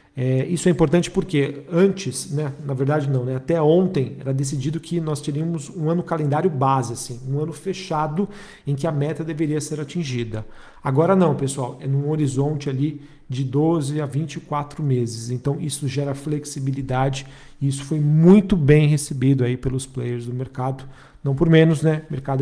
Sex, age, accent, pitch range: male, 40-59, Brazilian, 135-155 Hz